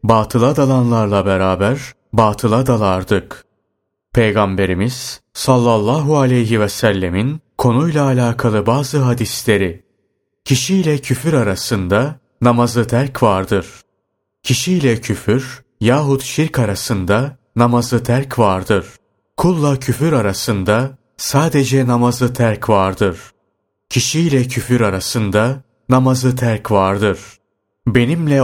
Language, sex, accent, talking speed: Turkish, male, native, 90 wpm